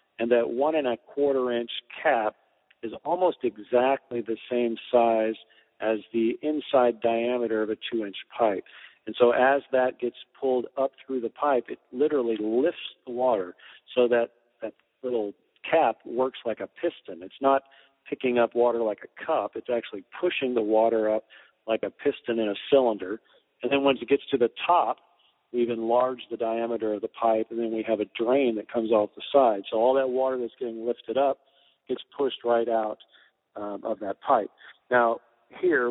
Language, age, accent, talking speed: English, 50-69, American, 175 wpm